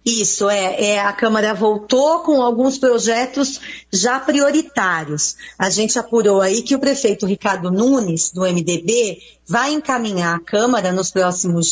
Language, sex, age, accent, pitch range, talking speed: Portuguese, female, 40-59, Brazilian, 205-255 Hz, 145 wpm